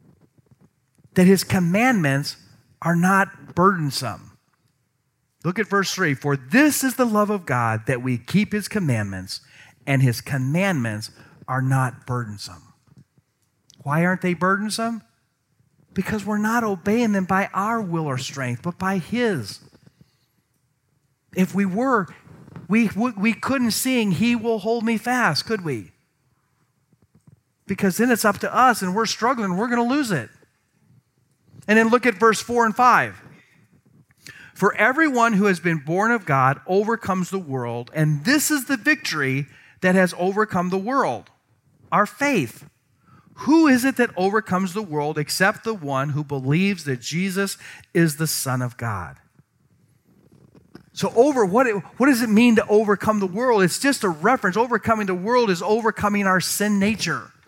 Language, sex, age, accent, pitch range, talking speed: English, male, 40-59, American, 140-220 Hz, 155 wpm